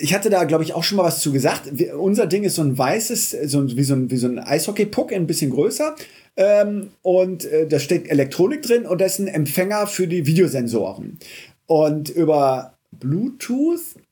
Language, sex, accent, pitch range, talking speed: German, male, German, 145-200 Hz, 200 wpm